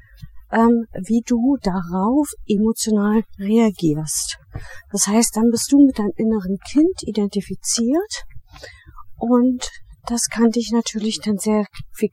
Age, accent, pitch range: 40-59, German, 195-240 Hz